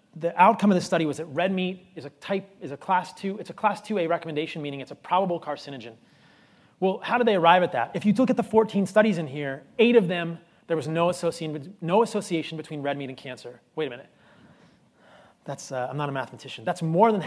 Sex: male